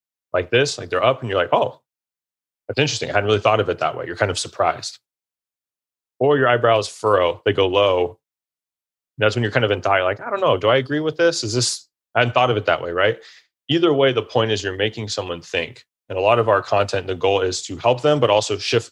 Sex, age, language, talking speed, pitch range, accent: male, 30-49, English, 255 wpm, 95-125 Hz, American